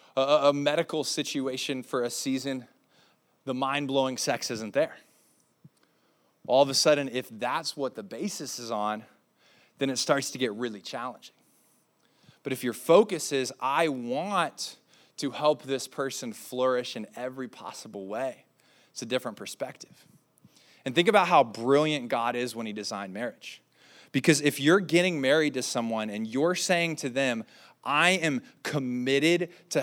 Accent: American